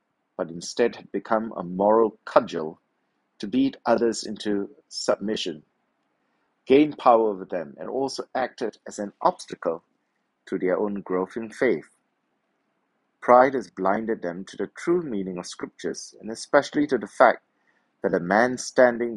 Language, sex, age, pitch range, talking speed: English, male, 50-69, 95-125 Hz, 145 wpm